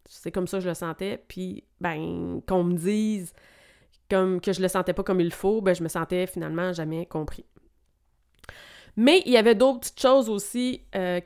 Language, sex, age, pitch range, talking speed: French, female, 20-39, 170-200 Hz, 210 wpm